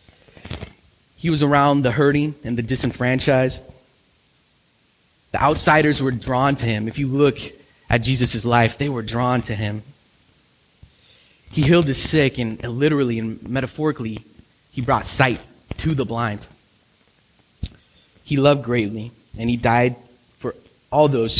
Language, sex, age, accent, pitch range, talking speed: English, male, 20-39, American, 110-135 Hz, 135 wpm